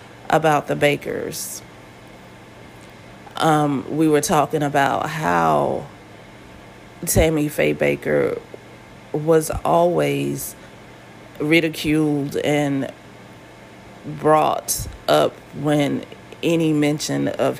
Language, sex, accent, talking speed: English, female, American, 75 wpm